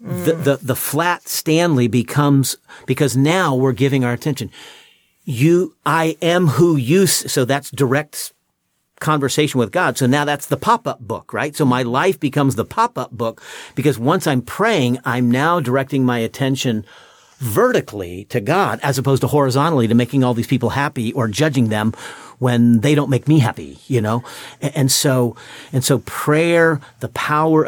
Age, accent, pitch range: 50-69, American, 120-155 Hz